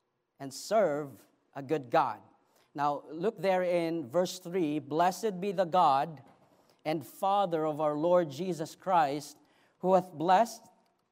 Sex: male